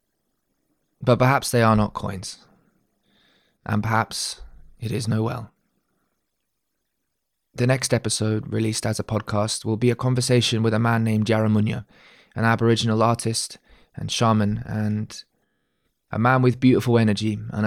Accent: British